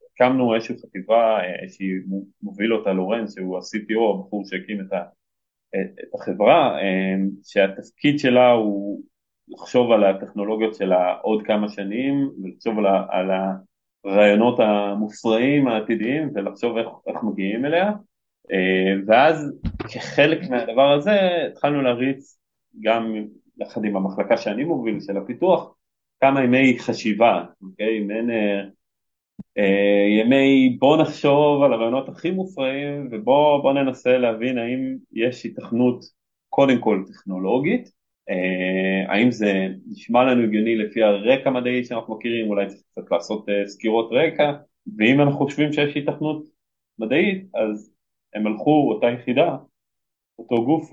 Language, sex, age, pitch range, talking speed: Hebrew, male, 30-49, 100-130 Hz, 125 wpm